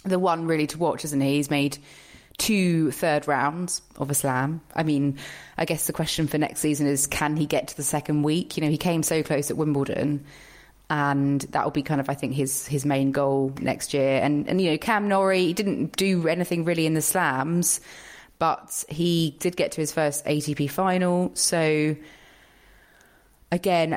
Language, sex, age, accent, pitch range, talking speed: English, female, 20-39, British, 140-160 Hz, 195 wpm